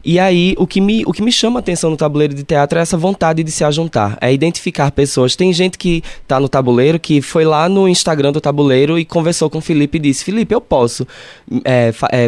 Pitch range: 135-170 Hz